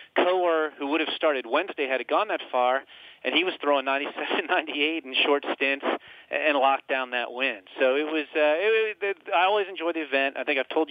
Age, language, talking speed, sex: 40-59, English, 220 wpm, male